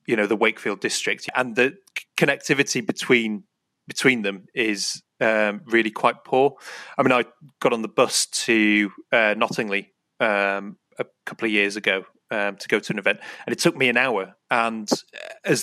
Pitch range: 105-115 Hz